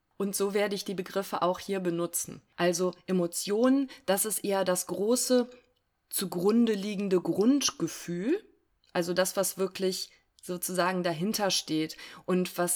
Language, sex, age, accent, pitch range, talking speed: German, female, 20-39, German, 175-210 Hz, 130 wpm